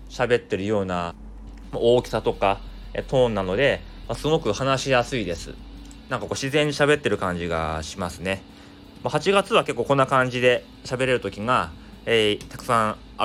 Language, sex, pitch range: Japanese, male, 95-135 Hz